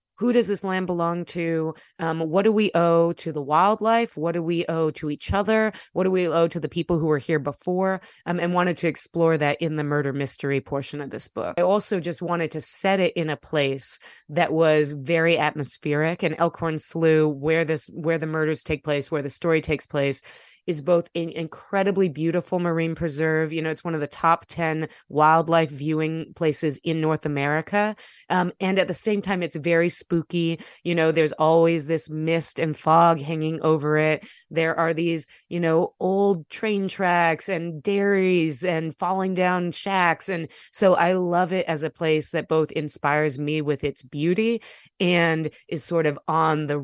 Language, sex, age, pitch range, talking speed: English, female, 30-49, 150-175 Hz, 190 wpm